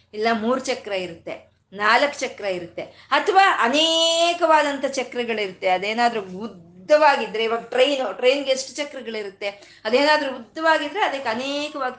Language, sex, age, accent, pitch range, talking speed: Kannada, female, 20-39, native, 210-280 Hz, 105 wpm